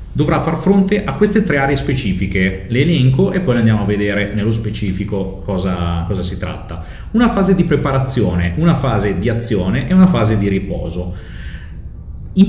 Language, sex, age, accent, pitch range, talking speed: Italian, male, 30-49, native, 105-160 Hz, 170 wpm